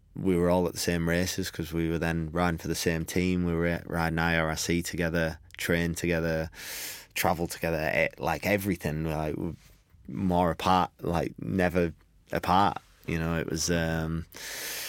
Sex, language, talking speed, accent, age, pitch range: male, English, 155 wpm, British, 20-39, 80-90 Hz